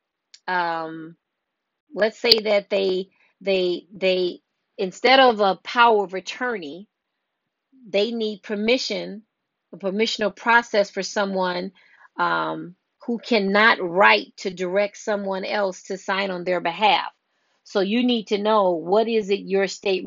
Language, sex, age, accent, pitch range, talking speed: English, female, 40-59, American, 185-220 Hz, 130 wpm